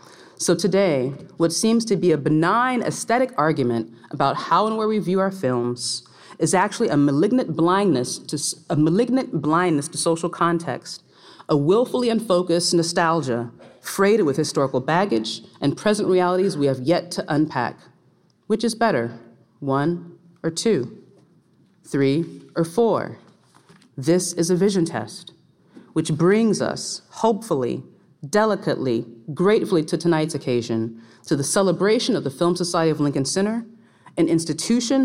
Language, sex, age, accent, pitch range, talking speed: English, female, 40-59, American, 150-190 Hz, 140 wpm